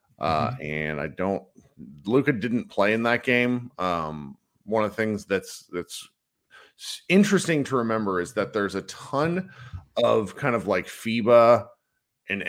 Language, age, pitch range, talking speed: English, 40-59, 95-125 Hz, 150 wpm